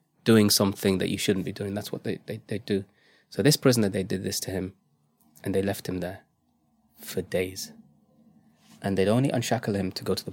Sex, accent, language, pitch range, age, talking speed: male, British, English, 95-125 Hz, 20-39, 215 wpm